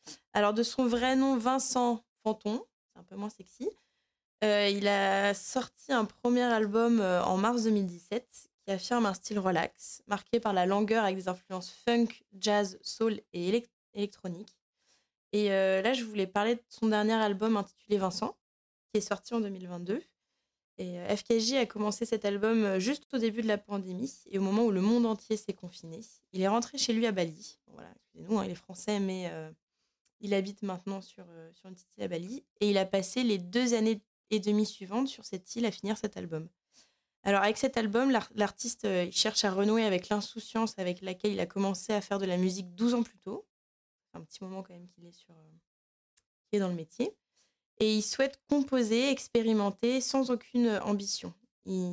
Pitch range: 190-230 Hz